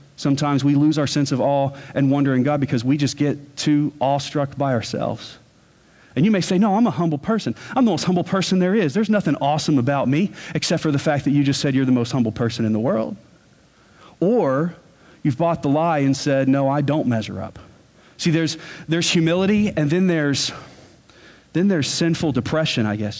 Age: 40-59